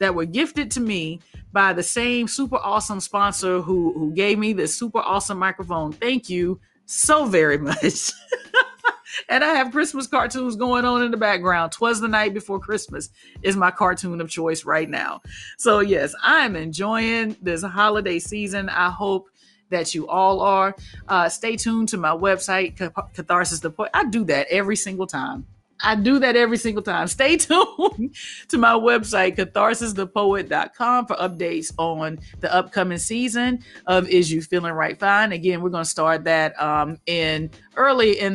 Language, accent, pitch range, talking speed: English, American, 170-220 Hz, 165 wpm